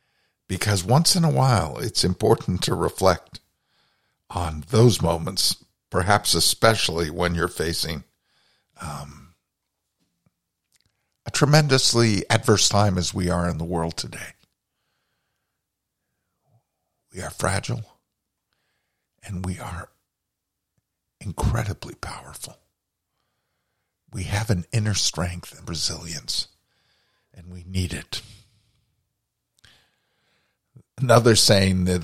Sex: male